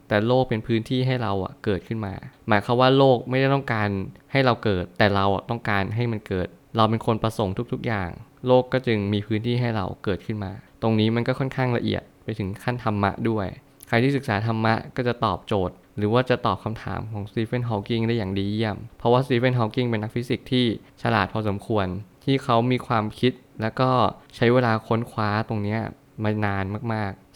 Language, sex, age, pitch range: Thai, male, 20-39, 105-125 Hz